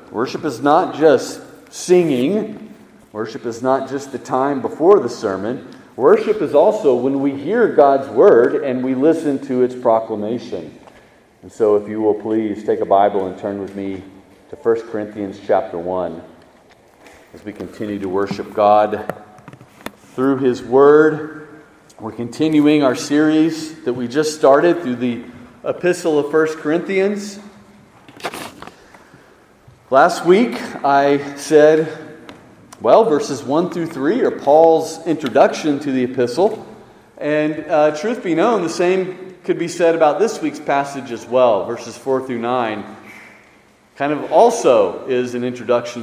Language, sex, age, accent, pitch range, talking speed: English, male, 40-59, American, 115-155 Hz, 145 wpm